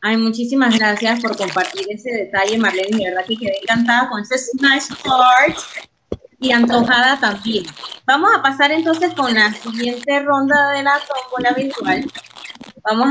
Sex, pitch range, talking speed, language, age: female, 215-265 Hz, 150 wpm, Spanish, 20-39